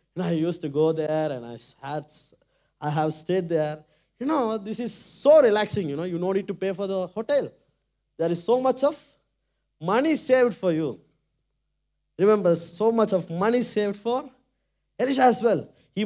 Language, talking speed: Tamil, 185 wpm